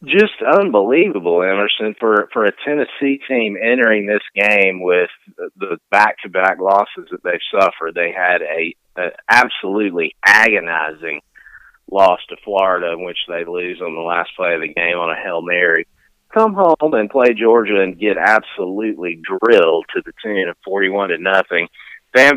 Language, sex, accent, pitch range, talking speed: English, male, American, 100-135 Hz, 160 wpm